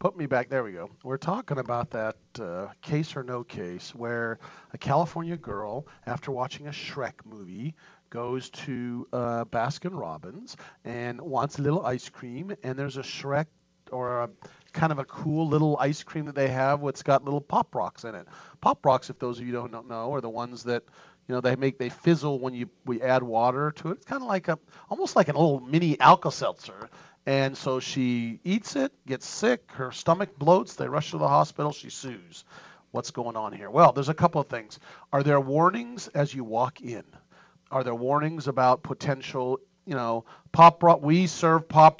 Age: 40-59